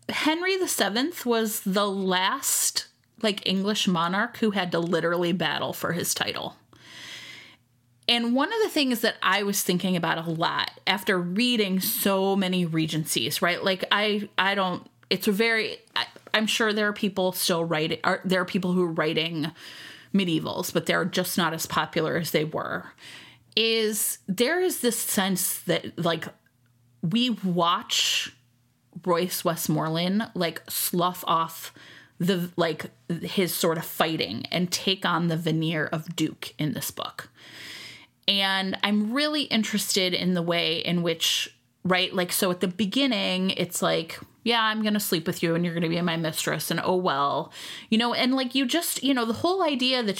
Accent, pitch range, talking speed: American, 170-215 Hz, 160 wpm